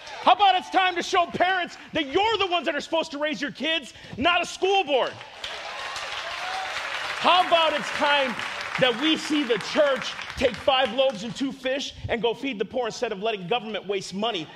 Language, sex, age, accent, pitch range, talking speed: English, male, 40-59, American, 200-280 Hz, 200 wpm